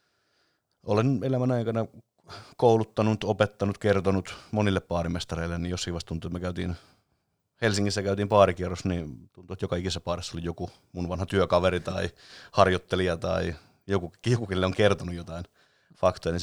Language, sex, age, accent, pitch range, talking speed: Finnish, male, 30-49, native, 90-105 Hz, 140 wpm